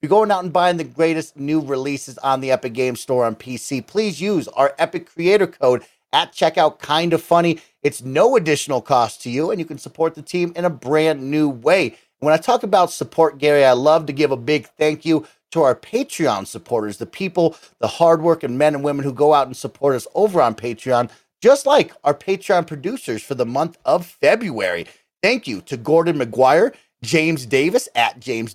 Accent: American